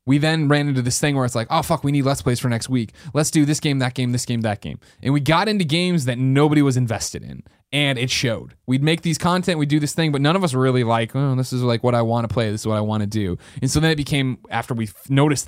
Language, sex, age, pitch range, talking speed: English, male, 20-39, 110-145 Hz, 310 wpm